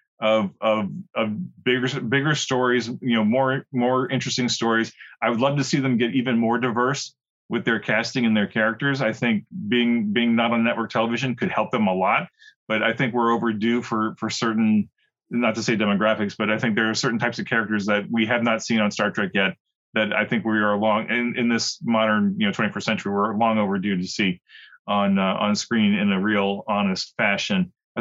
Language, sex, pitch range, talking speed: English, male, 110-130 Hz, 215 wpm